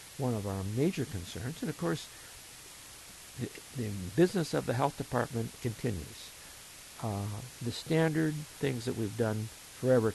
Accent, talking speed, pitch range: American, 140 wpm, 105-130 Hz